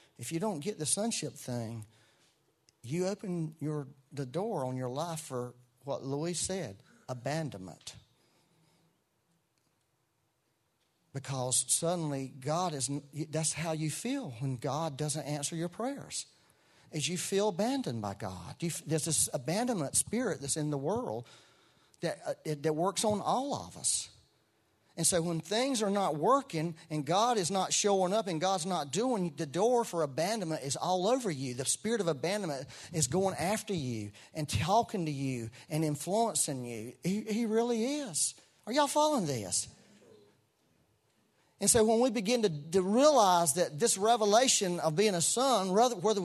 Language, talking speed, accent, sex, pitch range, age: English, 155 wpm, American, male, 140-205 Hz, 40-59